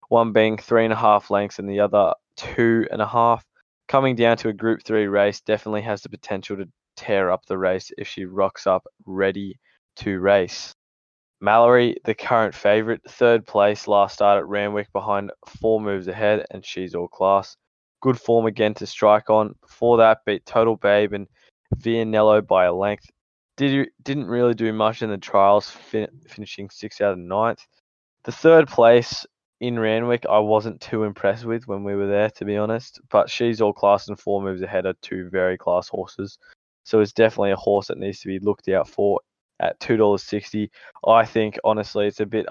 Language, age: English, 20-39